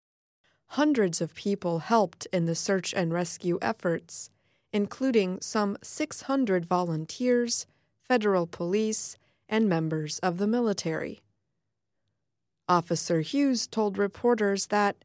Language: English